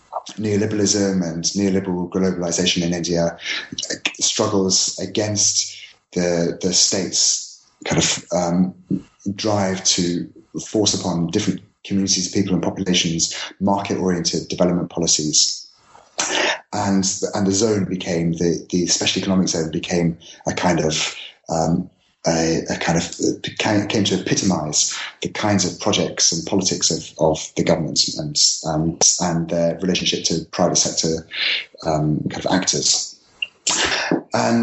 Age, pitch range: 30-49, 85-100 Hz